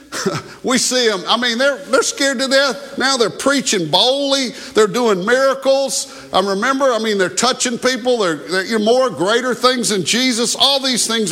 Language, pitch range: English, 175-250 Hz